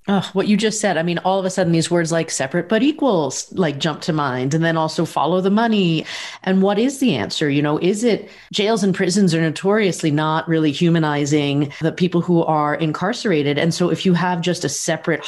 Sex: female